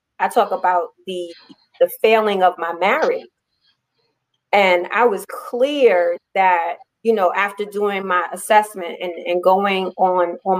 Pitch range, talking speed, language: 185-225 Hz, 140 wpm, English